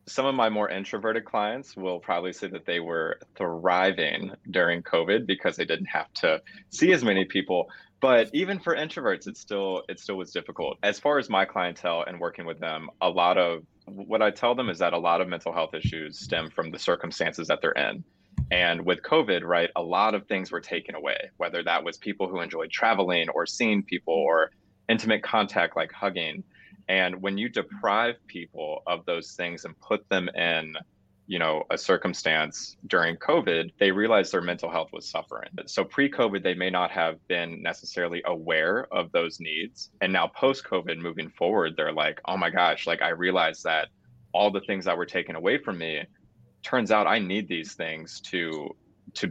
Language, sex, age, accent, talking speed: English, male, 20-39, American, 190 wpm